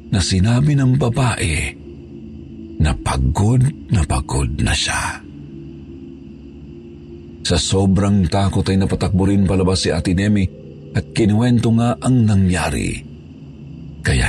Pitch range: 75-125 Hz